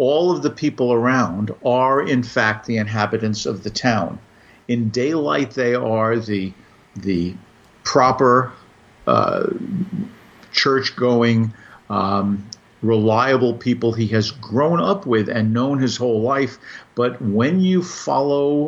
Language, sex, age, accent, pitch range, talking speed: English, male, 50-69, American, 110-135 Hz, 120 wpm